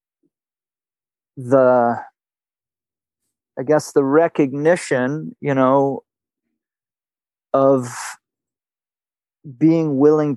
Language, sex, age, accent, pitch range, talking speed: English, male, 40-59, American, 125-150 Hz, 60 wpm